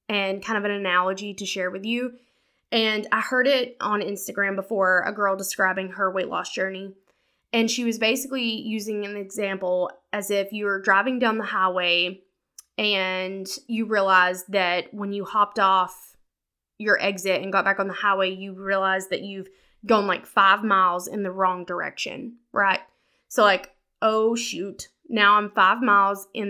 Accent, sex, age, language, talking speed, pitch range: American, female, 10-29, English, 170 wpm, 195-245 Hz